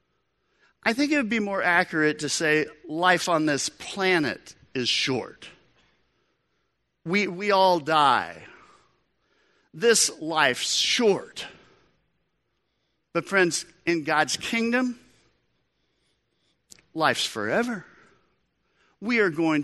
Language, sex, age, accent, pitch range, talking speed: English, male, 50-69, American, 140-180 Hz, 100 wpm